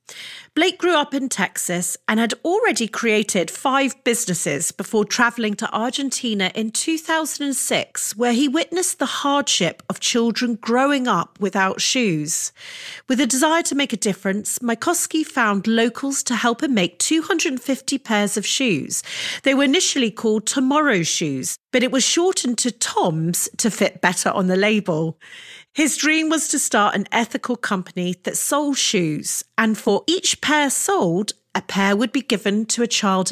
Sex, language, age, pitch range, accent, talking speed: female, English, 40-59, 200-275 Hz, British, 160 wpm